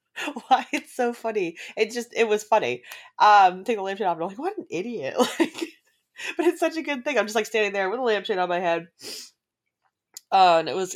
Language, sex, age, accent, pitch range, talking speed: English, female, 20-39, American, 155-230 Hz, 230 wpm